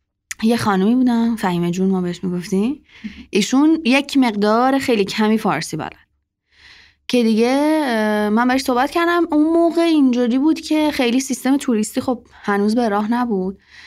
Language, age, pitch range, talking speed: Persian, 20-39, 185-255 Hz, 145 wpm